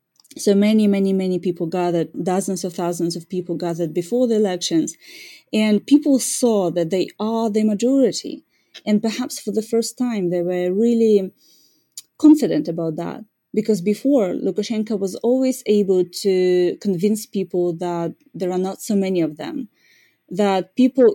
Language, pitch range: English, 175-225 Hz